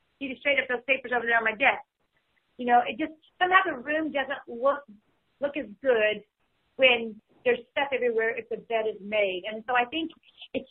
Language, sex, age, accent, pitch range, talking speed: English, female, 40-59, American, 210-260 Hz, 200 wpm